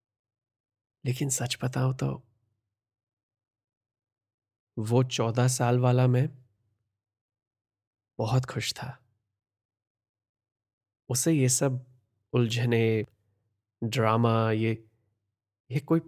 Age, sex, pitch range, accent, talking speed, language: 20-39, male, 105-125 Hz, native, 75 wpm, Hindi